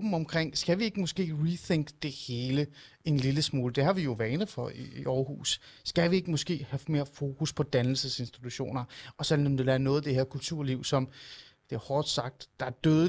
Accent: native